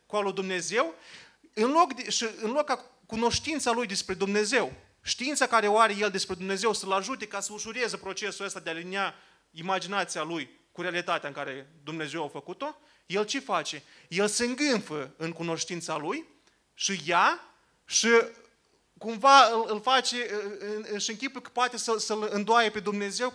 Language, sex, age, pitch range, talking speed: Romanian, male, 30-49, 195-245 Hz, 155 wpm